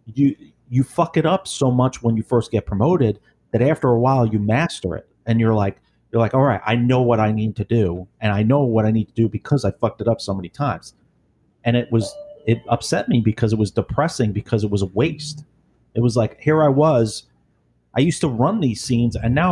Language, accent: English, American